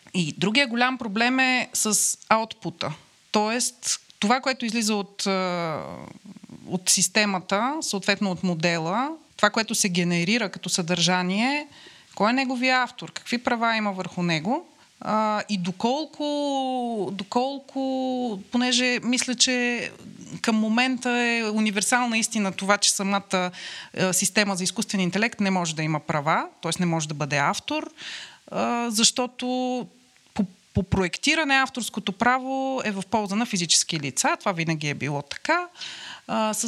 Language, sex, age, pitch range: Bulgarian, female, 30-49, 180-250 Hz